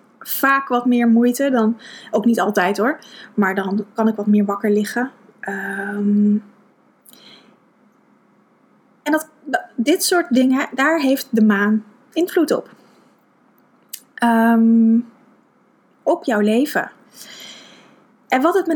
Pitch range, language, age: 215-255 Hz, Dutch, 20-39